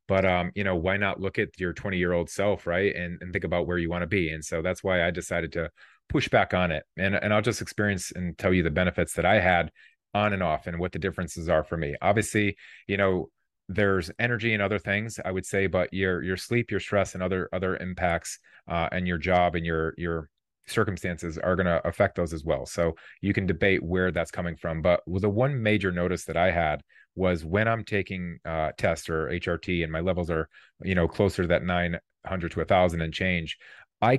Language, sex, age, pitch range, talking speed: English, male, 30-49, 85-100 Hz, 235 wpm